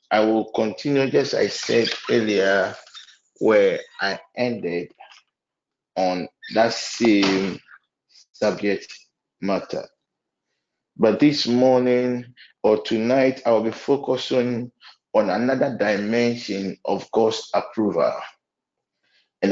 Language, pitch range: English, 110-135 Hz